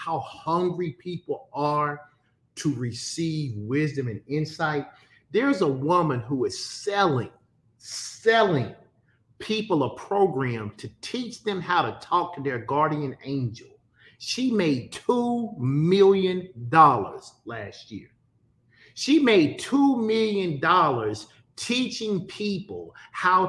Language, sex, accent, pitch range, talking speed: English, male, American, 140-235 Hz, 105 wpm